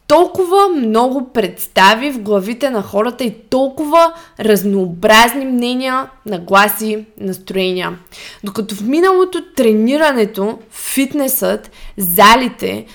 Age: 20-39